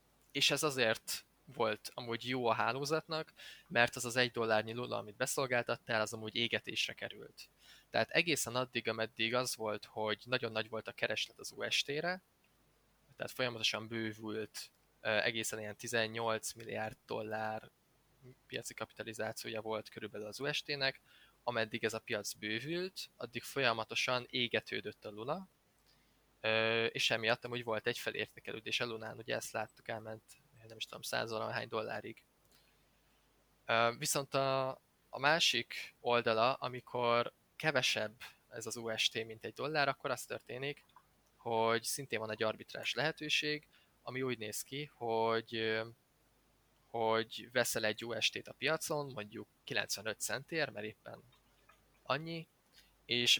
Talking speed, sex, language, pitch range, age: 130 wpm, male, Hungarian, 110-130 Hz, 20-39